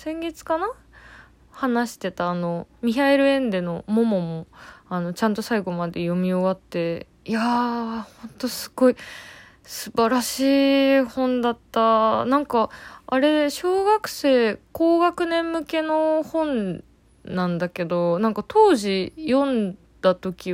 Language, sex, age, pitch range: Japanese, female, 20-39, 185-265 Hz